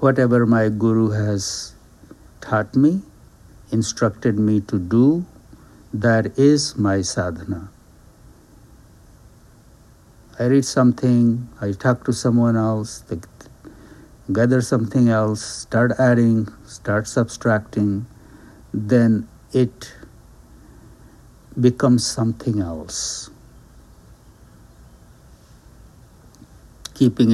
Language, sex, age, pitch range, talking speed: English, male, 60-79, 100-125 Hz, 80 wpm